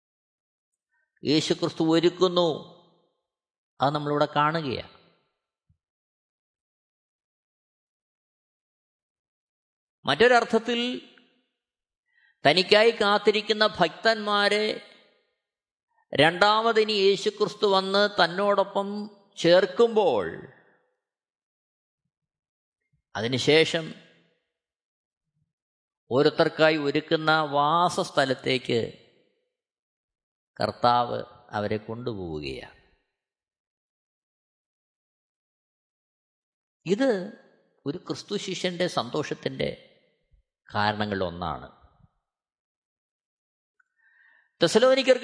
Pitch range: 140-215 Hz